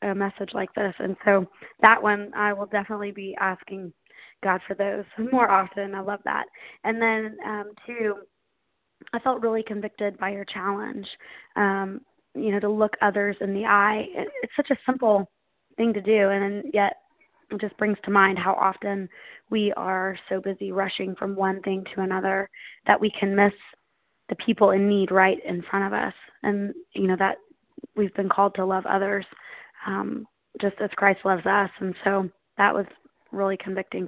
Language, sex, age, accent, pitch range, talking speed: English, female, 20-39, American, 195-215 Hz, 180 wpm